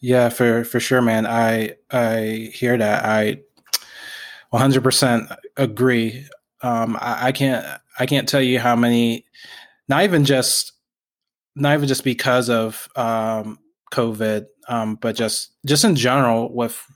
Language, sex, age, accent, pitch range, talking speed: English, male, 20-39, American, 115-135 Hz, 145 wpm